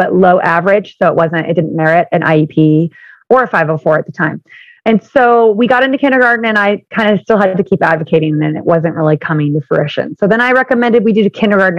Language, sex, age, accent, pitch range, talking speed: English, female, 30-49, American, 165-220 Hz, 235 wpm